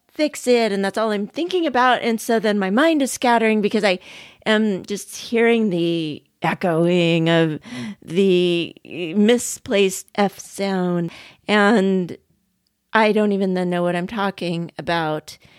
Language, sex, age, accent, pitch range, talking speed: English, female, 40-59, American, 190-250 Hz, 140 wpm